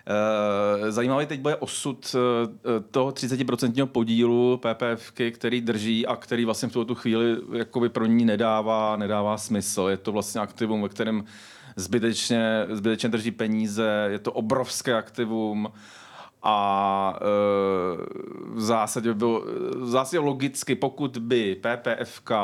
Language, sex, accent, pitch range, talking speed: Czech, male, native, 100-115 Hz, 125 wpm